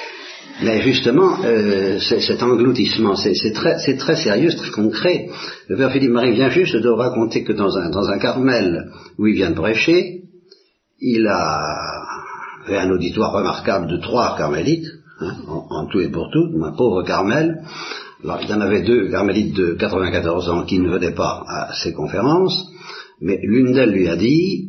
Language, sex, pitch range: Italian, male, 100-165 Hz